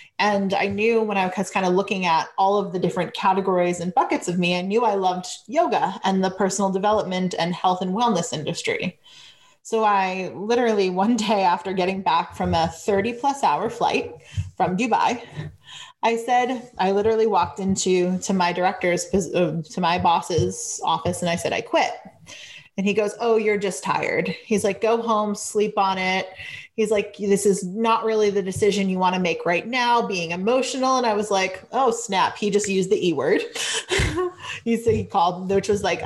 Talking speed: 190 wpm